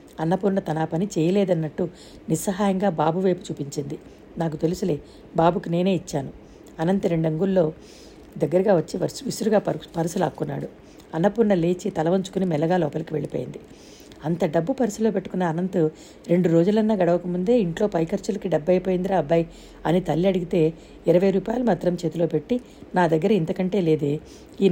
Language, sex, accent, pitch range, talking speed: Telugu, female, native, 165-200 Hz, 130 wpm